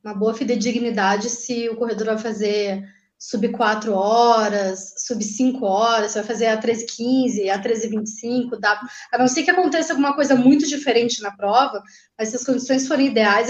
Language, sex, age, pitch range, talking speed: Portuguese, female, 20-39, 215-275 Hz, 160 wpm